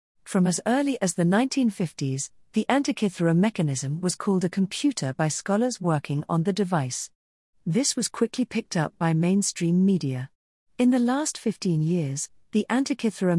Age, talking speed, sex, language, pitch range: 40-59, 150 wpm, female, English, 160-215 Hz